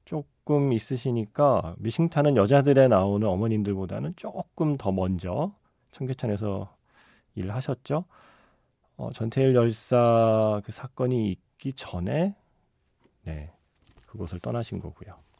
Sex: male